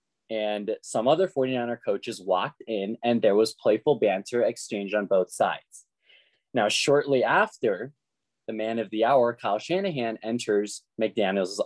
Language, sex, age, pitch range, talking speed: English, male, 20-39, 105-135 Hz, 145 wpm